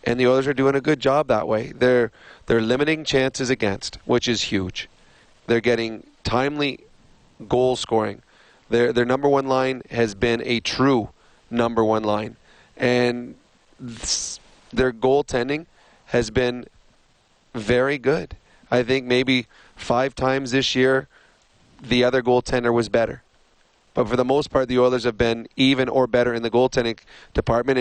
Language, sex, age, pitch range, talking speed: English, male, 30-49, 115-130 Hz, 155 wpm